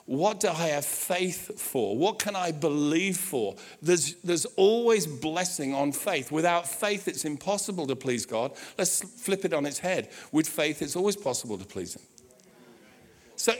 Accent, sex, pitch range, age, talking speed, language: British, male, 155-205 Hz, 50-69, 170 wpm, English